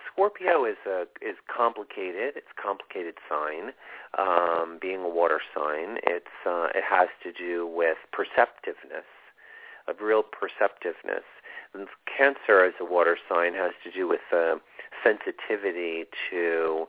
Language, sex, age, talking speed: English, male, 40-59, 135 wpm